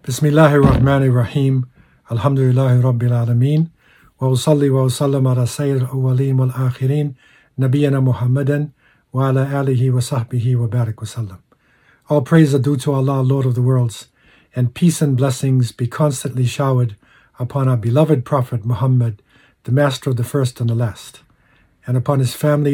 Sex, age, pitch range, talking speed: male, 50-69, 125-145 Hz, 150 wpm